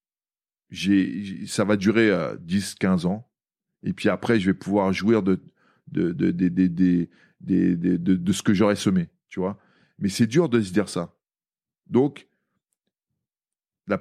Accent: French